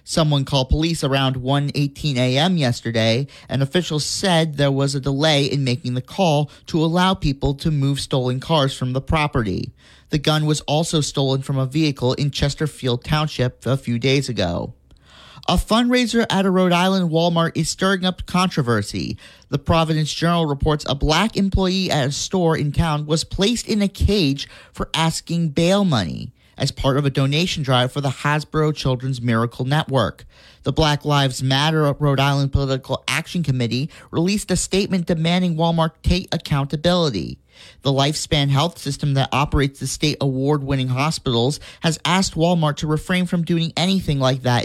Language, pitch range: English, 130-165 Hz